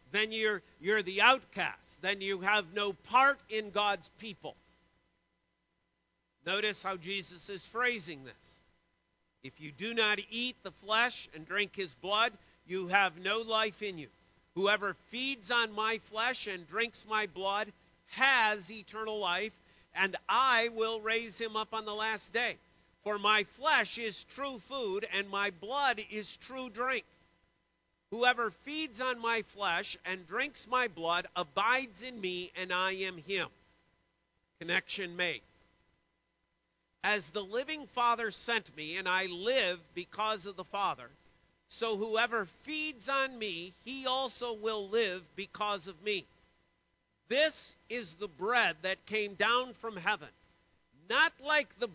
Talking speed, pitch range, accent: 145 wpm, 185-235 Hz, American